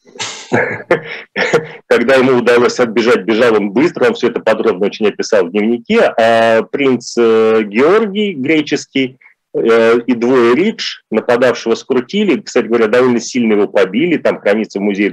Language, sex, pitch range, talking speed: Russian, male, 105-150 Hz, 135 wpm